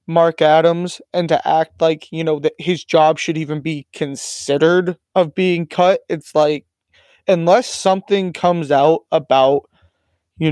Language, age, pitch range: English, 20-39, 145-180 Hz